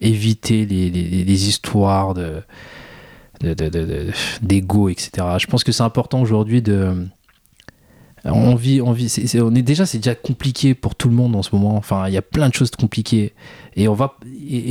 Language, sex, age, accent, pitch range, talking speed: French, male, 20-39, French, 100-125 Hz, 205 wpm